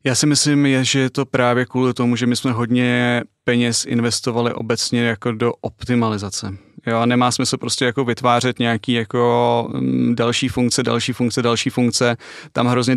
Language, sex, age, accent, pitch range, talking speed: Czech, male, 20-39, native, 115-125 Hz, 165 wpm